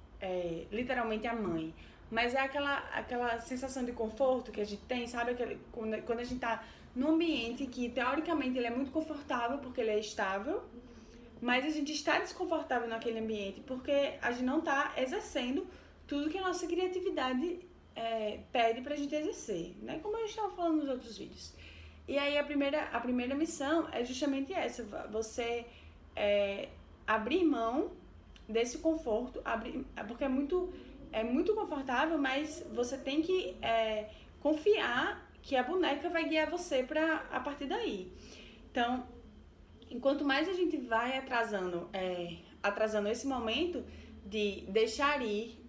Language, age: Portuguese, 20-39